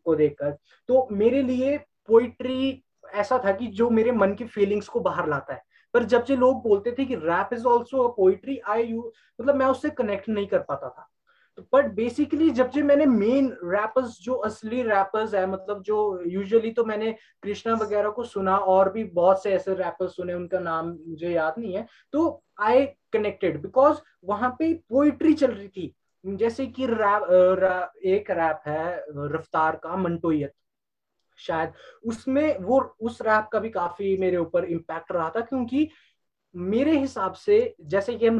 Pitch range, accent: 185-255 Hz, native